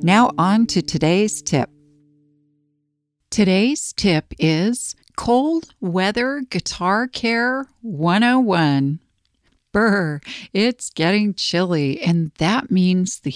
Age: 60-79